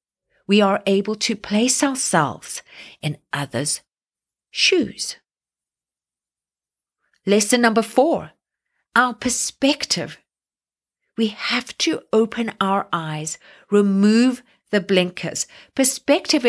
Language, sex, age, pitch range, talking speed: English, female, 50-69, 180-235 Hz, 85 wpm